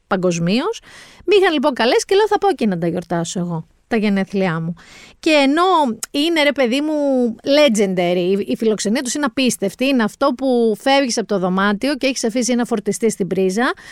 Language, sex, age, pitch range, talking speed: Greek, female, 30-49, 205-285 Hz, 185 wpm